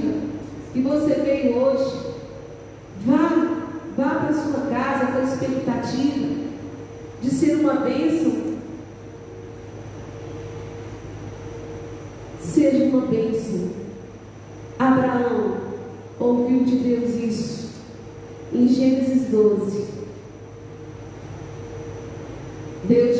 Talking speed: 75 wpm